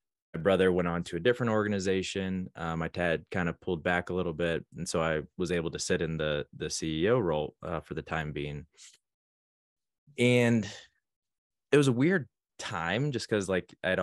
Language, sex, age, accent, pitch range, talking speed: English, male, 20-39, American, 85-105 Hz, 195 wpm